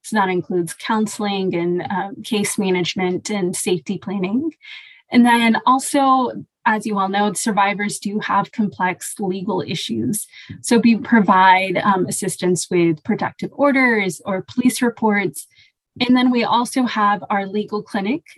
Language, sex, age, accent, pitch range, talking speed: English, female, 20-39, American, 185-220 Hz, 140 wpm